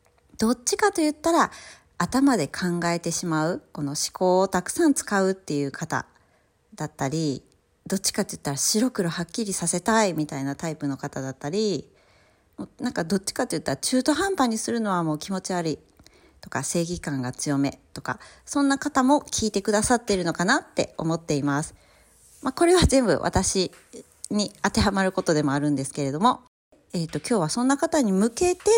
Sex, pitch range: female, 160-265 Hz